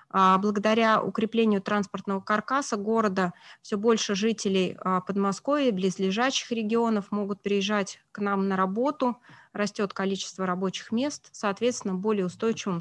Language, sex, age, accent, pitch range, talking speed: Russian, female, 20-39, native, 185-225 Hz, 110 wpm